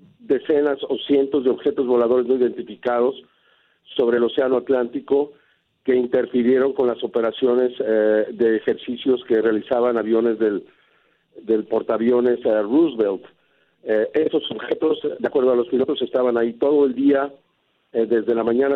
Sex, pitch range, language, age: male, 115-140 Hz, Spanish, 50-69